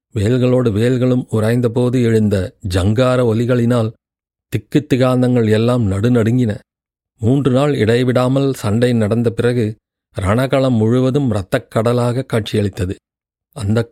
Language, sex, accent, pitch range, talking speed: Tamil, male, native, 110-130 Hz, 90 wpm